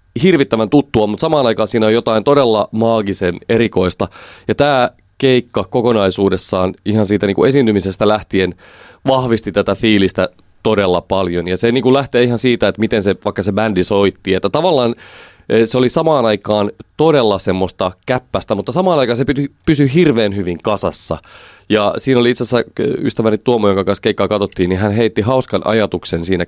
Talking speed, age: 165 wpm, 30-49